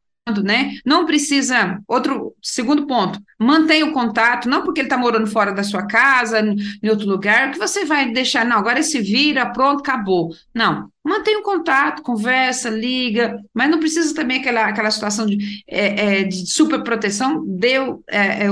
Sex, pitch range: female, 205-270 Hz